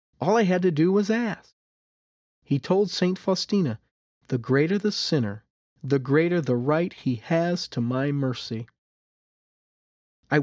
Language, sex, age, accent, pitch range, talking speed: English, male, 40-59, American, 125-175 Hz, 145 wpm